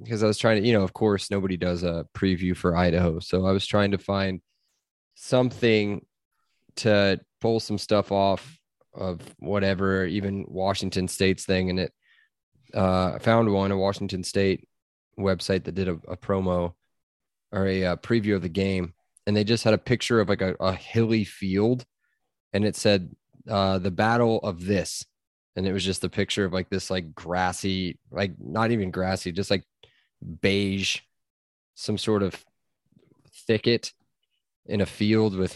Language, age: English, 20-39